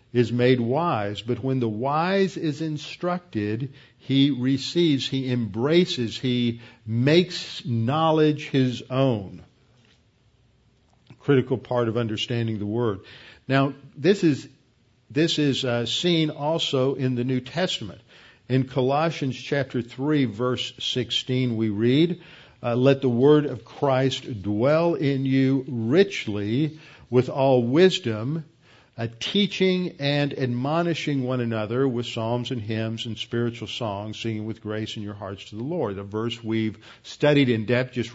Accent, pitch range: American, 115-145 Hz